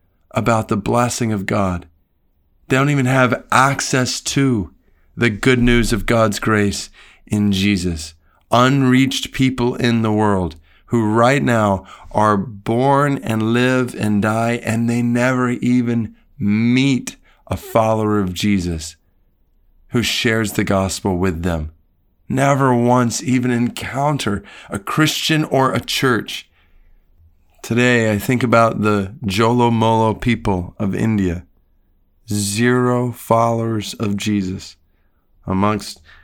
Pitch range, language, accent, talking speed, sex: 95-120 Hz, English, American, 120 wpm, male